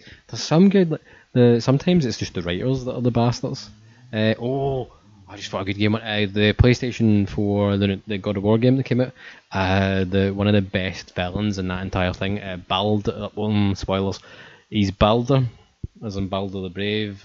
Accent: British